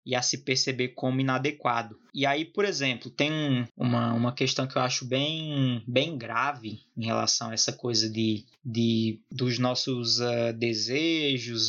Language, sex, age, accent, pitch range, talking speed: Portuguese, male, 20-39, Brazilian, 120-135 Hz, 160 wpm